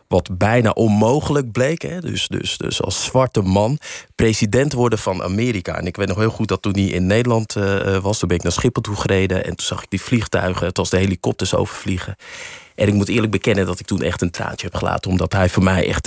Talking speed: 235 wpm